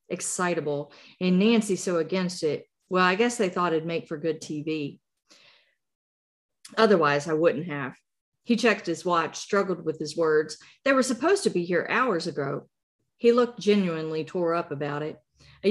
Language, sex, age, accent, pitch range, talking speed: English, female, 40-59, American, 160-200 Hz, 170 wpm